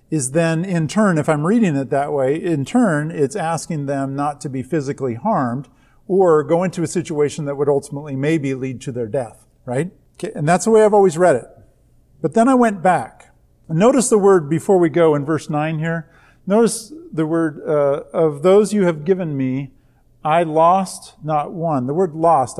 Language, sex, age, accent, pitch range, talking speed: English, male, 50-69, American, 140-185 Hz, 200 wpm